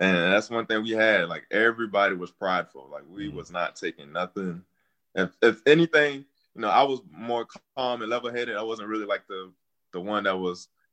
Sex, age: male, 20-39